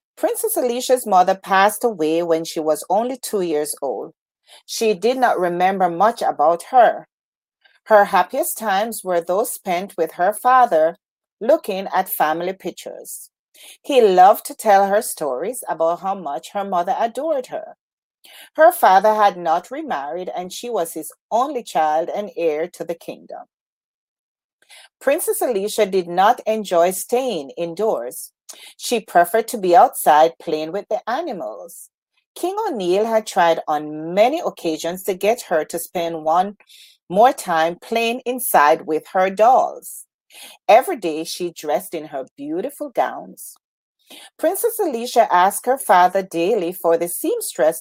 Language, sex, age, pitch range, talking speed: English, female, 40-59, 170-255 Hz, 145 wpm